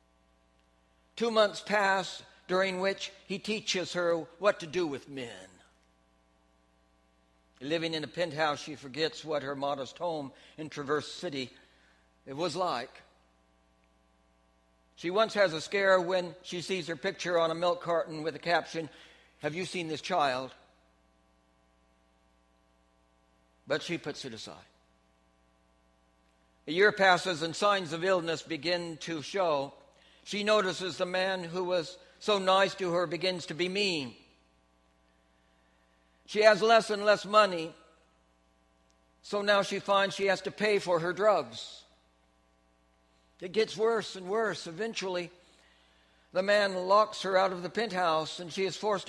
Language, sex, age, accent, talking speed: English, male, 60-79, American, 140 wpm